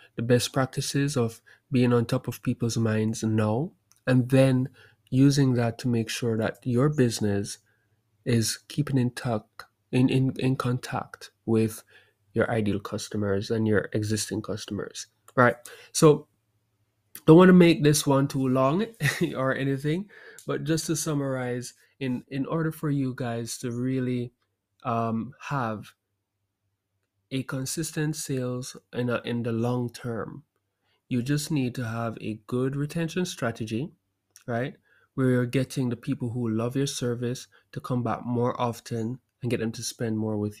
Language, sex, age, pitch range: English, male, 20-39, 110-135 Hz